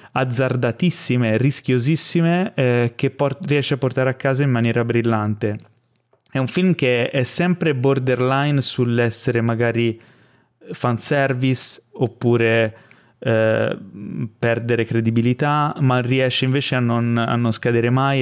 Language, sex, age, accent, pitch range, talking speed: Italian, male, 20-39, native, 120-140 Hz, 115 wpm